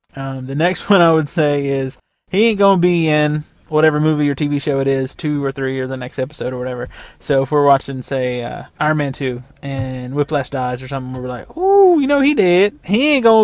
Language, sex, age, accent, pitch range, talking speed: English, male, 20-39, American, 130-165 Hz, 240 wpm